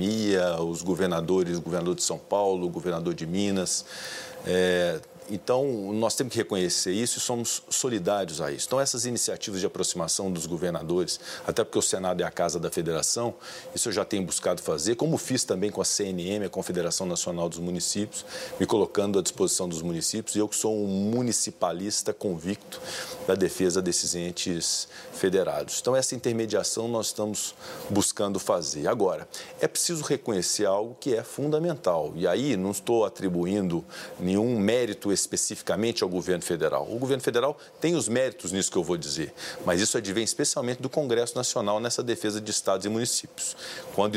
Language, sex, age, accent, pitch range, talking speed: Portuguese, male, 40-59, Brazilian, 90-115 Hz, 170 wpm